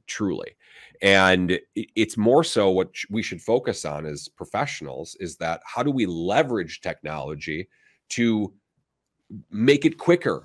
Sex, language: male, English